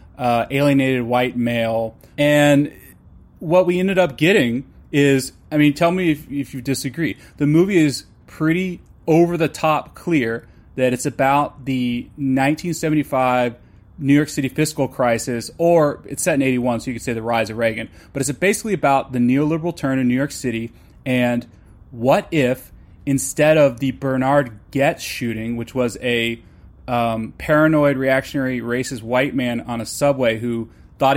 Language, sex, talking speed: English, male, 160 wpm